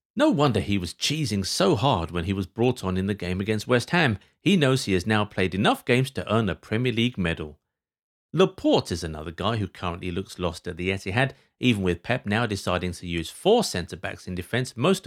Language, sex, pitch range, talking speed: English, male, 95-140 Hz, 220 wpm